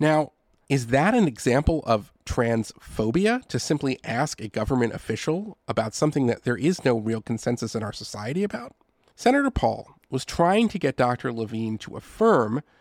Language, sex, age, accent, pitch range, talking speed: English, male, 40-59, American, 115-165 Hz, 165 wpm